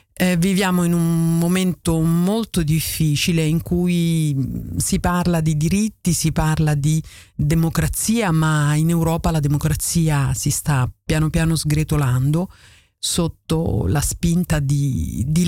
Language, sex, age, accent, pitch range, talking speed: Dutch, female, 50-69, Italian, 145-180 Hz, 120 wpm